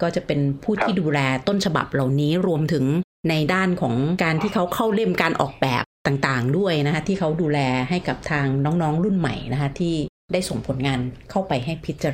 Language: Thai